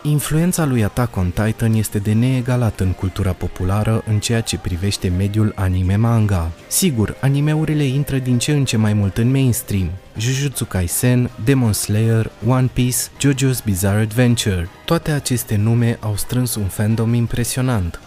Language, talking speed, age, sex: Romanian, 150 wpm, 20-39, male